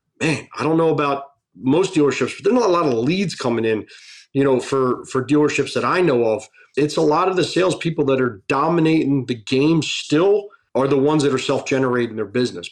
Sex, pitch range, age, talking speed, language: male, 125-160 Hz, 40-59, 215 wpm, English